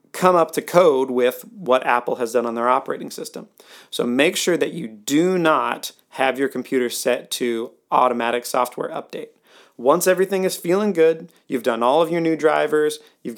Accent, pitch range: American, 125-160 Hz